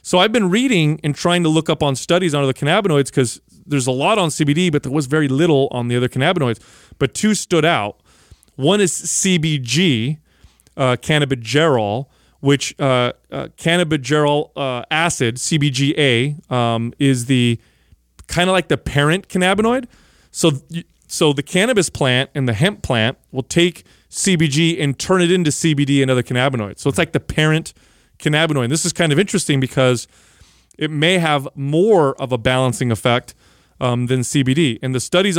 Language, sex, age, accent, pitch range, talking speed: English, male, 30-49, American, 125-165 Hz, 170 wpm